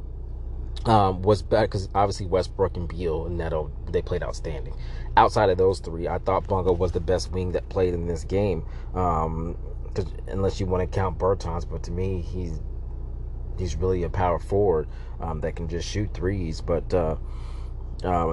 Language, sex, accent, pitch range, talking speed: English, male, American, 80-100 Hz, 175 wpm